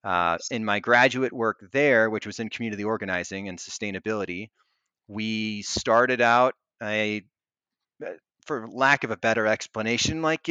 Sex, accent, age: male, American, 30-49